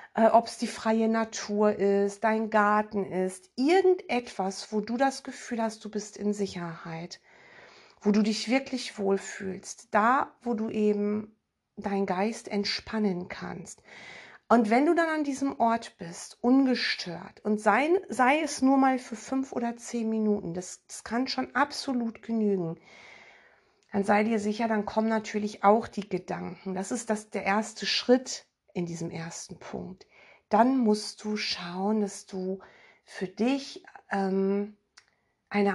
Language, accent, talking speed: German, German, 145 wpm